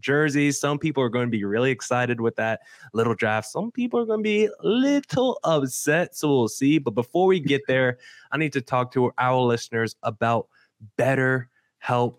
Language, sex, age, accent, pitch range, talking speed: English, male, 20-39, American, 115-145 Hz, 190 wpm